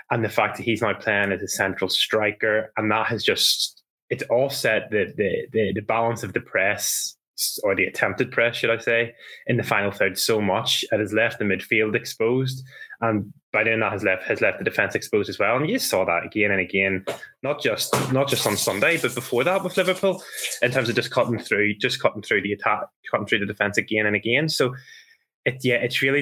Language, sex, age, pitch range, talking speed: English, male, 20-39, 100-120 Hz, 225 wpm